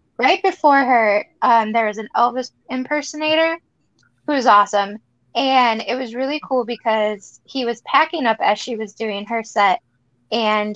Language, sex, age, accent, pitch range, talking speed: English, female, 10-29, American, 205-255 Hz, 160 wpm